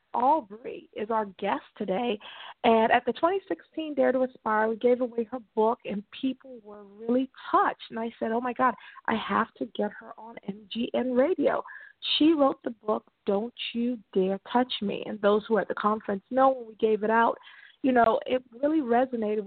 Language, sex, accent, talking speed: English, female, American, 195 wpm